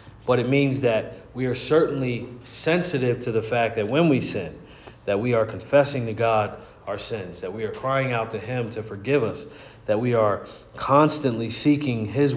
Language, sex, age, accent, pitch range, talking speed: English, male, 40-59, American, 110-140 Hz, 190 wpm